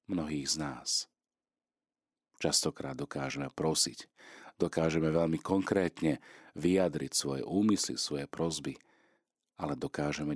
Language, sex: Slovak, male